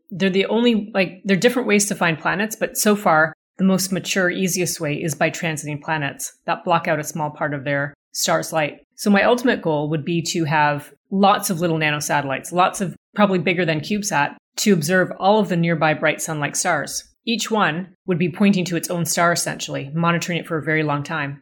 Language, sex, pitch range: English, female, 155-185 Hz